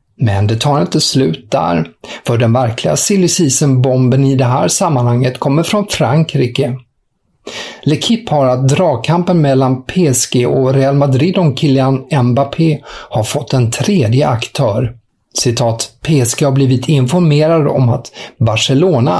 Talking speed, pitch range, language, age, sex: 135 wpm, 120-150 Hz, English, 50-69, male